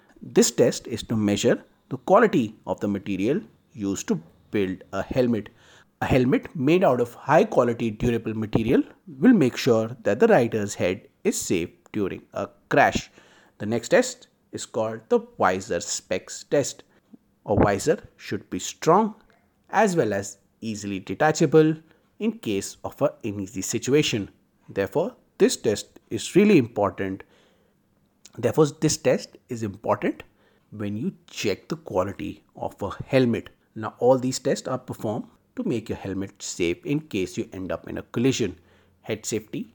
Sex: male